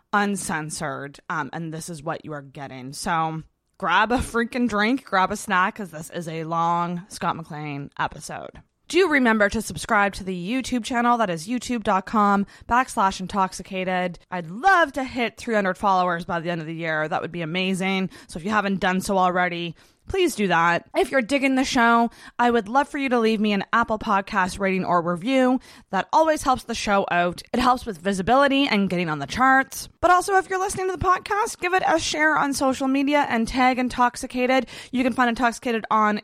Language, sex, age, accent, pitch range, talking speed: English, female, 20-39, American, 185-255 Hz, 200 wpm